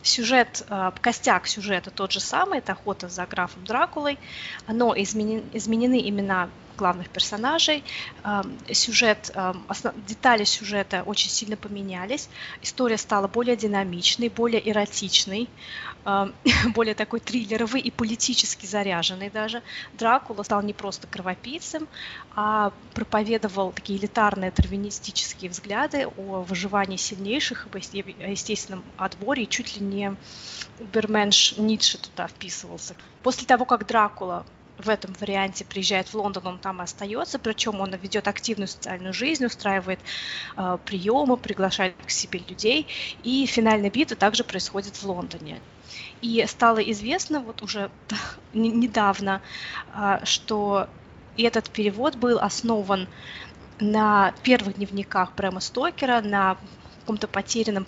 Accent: native